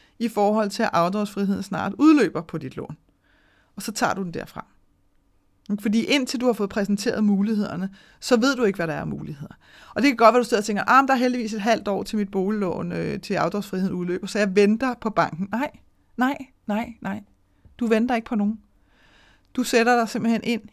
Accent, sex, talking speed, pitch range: native, female, 215 wpm, 195-230 Hz